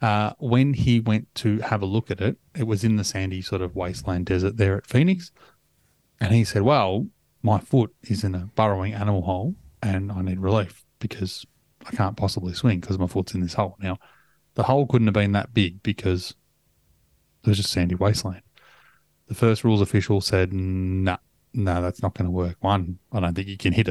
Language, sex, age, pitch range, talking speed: English, male, 30-49, 95-110 Hz, 210 wpm